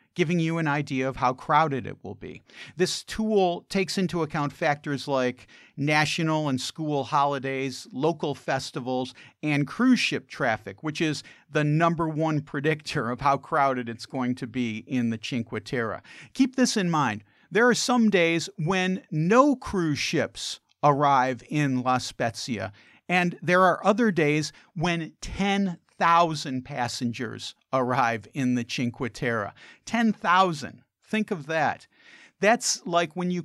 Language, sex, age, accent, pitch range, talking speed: English, male, 50-69, American, 130-175 Hz, 145 wpm